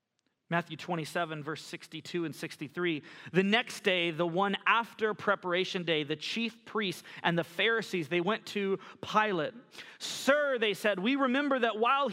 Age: 30-49